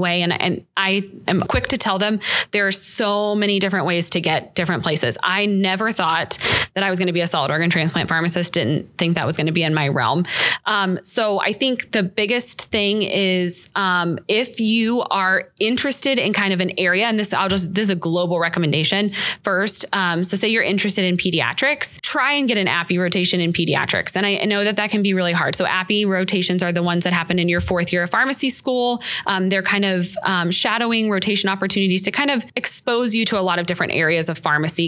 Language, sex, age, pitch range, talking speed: English, female, 20-39, 175-210 Hz, 225 wpm